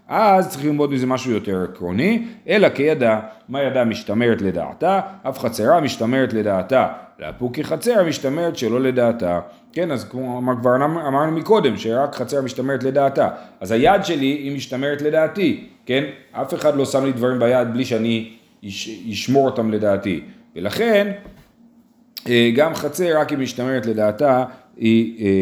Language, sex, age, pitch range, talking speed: Hebrew, male, 40-59, 115-175 Hz, 145 wpm